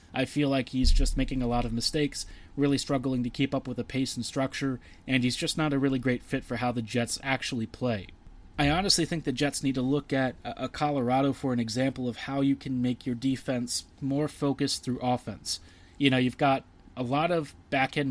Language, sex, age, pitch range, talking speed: English, male, 30-49, 125-145 Hz, 220 wpm